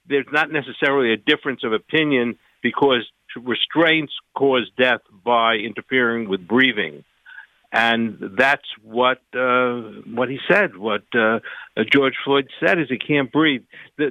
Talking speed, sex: 135 wpm, male